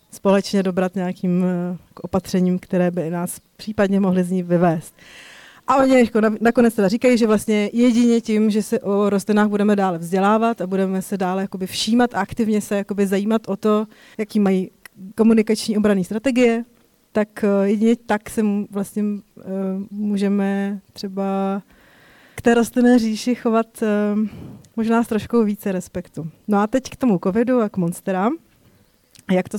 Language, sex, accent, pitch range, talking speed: Czech, female, native, 190-225 Hz, 140 wpm